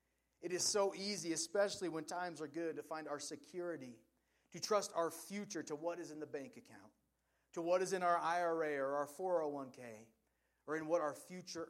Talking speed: 195 wpm